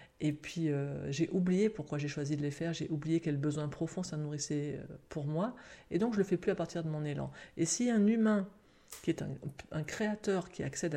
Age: 40-59